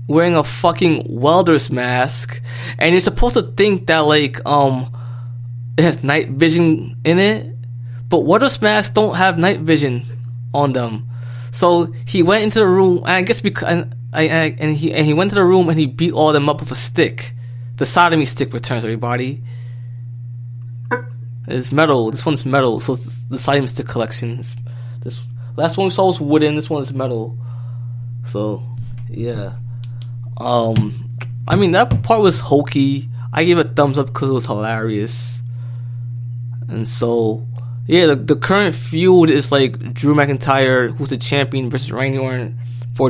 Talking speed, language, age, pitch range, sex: 165 wpm, English, 20-39, 120-145 Hz, male